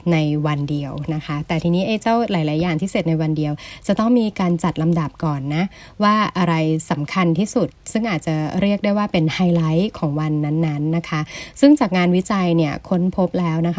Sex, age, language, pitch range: female, 20-39, Thai, 160-195 Hz